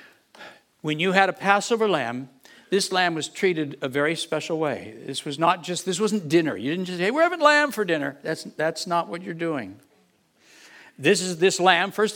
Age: 60-79